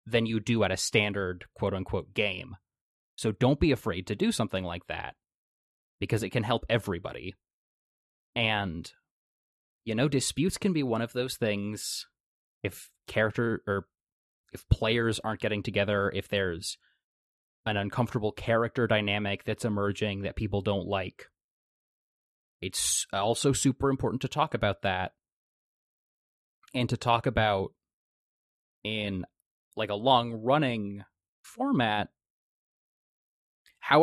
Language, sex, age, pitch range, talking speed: English, male, 20-39, 100-125 Hz, 125 wpm